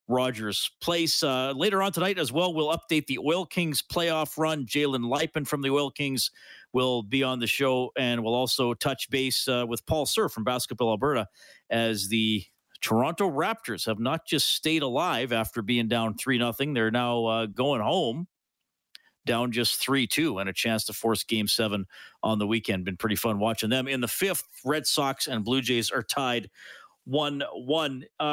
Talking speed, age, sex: 185 wpm, 40-59, male